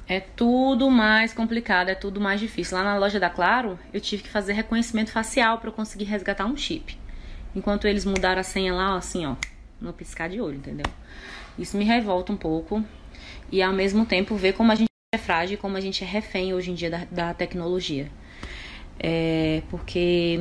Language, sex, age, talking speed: Portuguese, female, 20-39, 195 wpm